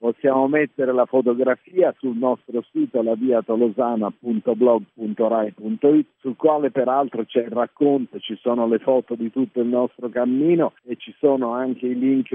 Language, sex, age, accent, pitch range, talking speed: Italian, male, 50-69, native, 115-135 Hz, 150 wpm